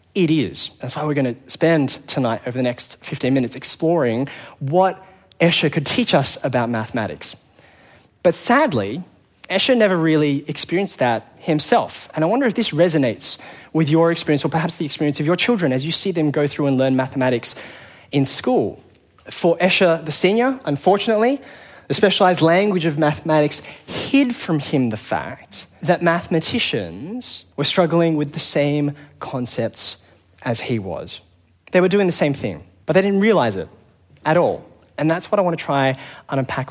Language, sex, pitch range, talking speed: English, male, 130-180 Hz, 170 wpm